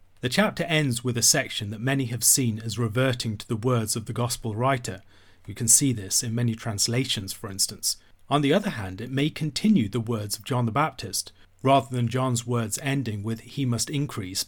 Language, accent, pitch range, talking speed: English, British, 110-135 Hz, 205 wpm